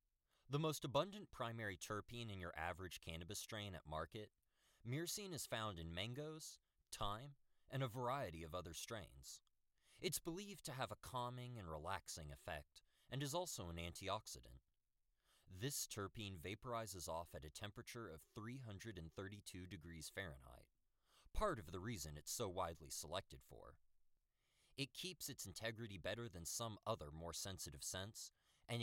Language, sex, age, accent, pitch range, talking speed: English, male, 20-39, American, 80-120 Hz, 145 wpm